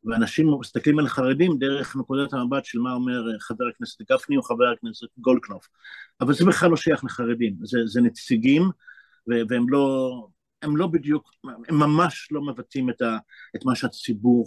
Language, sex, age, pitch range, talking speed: Hebrew, male, 50-69, 120-175 Hz, 160 wpm